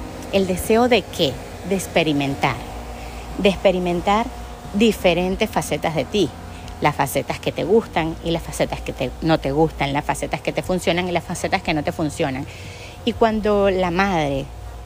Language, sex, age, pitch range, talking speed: Spanish, female, 30-49, 150-220 Hz, 160 wpm